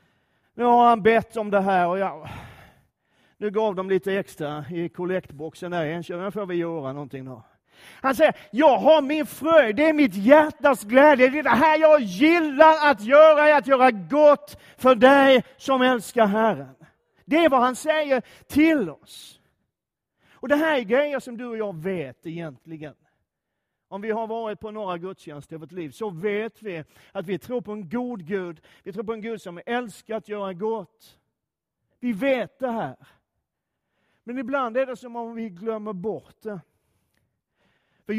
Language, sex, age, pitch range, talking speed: Swedish, male, 40-59, 190-260 Hz, 180 wpm